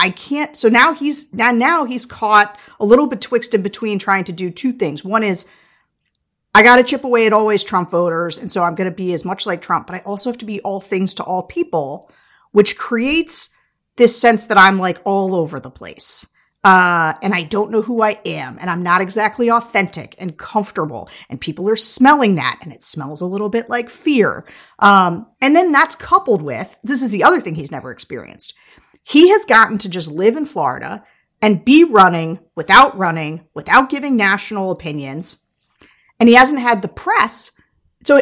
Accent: American